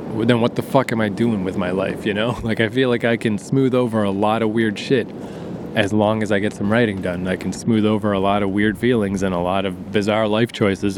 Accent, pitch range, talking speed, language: American, 100-125 Hz, 270 wpm, English